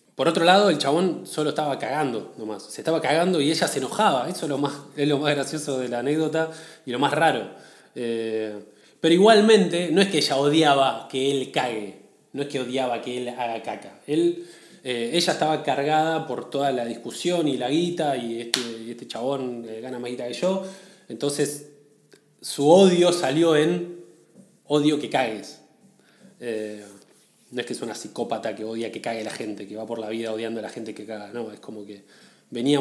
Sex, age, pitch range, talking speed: male, 20-39, 115-155 Hz, 195 wpm